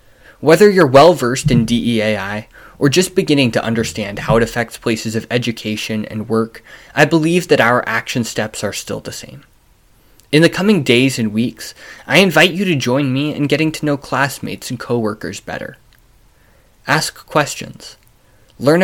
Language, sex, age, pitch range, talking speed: English, male, 20-39, 110-145 Hz, 160 wpm